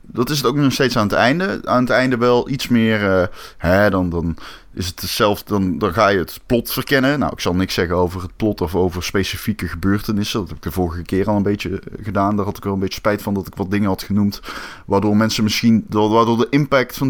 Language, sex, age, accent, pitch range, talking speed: Dutch, male, 20-39, Dutch, 95-120 Hz, 250 wpm